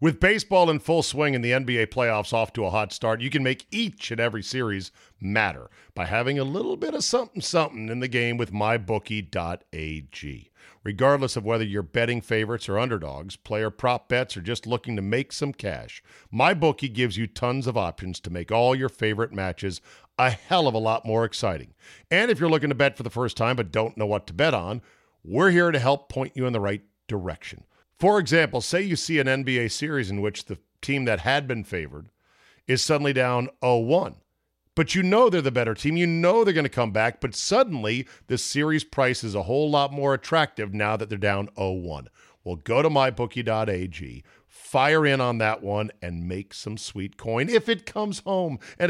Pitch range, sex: 105-145 Hz, male